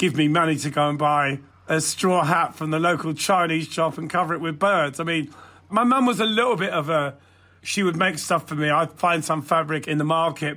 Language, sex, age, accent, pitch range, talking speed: English, male, 40-59, British, 150-190 Hz, 245 wpm